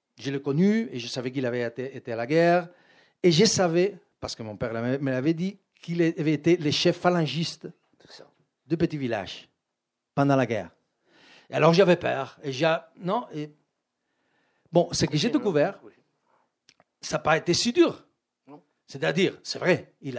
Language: French